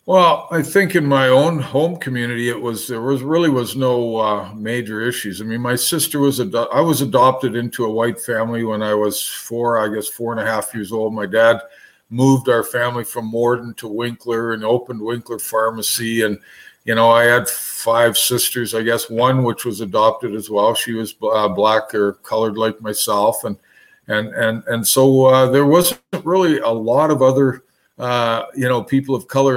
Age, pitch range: 50-69, 115-135 Hz